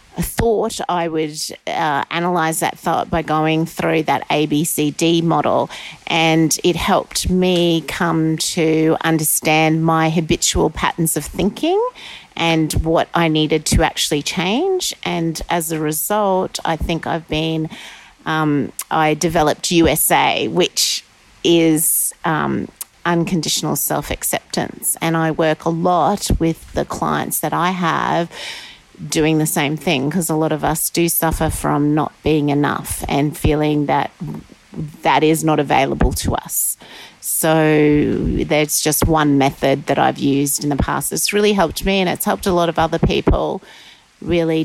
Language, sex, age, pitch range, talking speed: English, female, 30-49, 150-170 Hz, 145 wpm